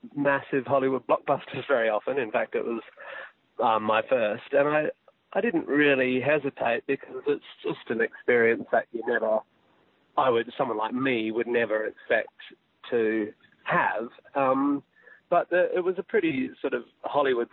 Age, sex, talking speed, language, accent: 30-49, male, 155 wpm, English, Australian